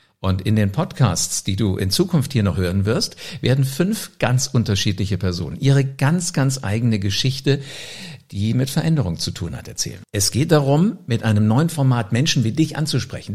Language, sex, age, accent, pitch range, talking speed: English, male, 60-79, German, 105-145 Hz, 180 wpm